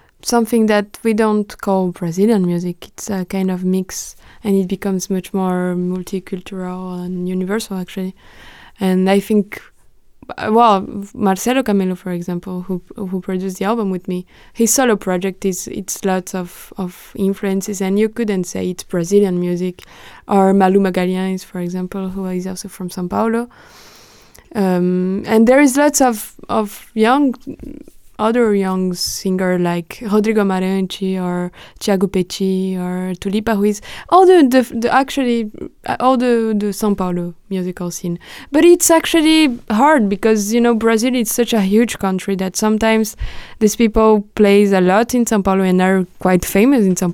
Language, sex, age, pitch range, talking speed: English, female, 20-39, 185-225 Hz, 160 wpm